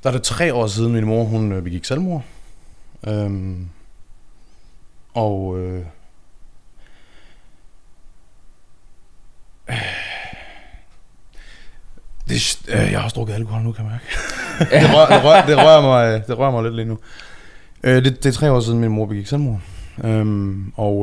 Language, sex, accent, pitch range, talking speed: Danish, male, native, 95-120 Hz, 150 wpm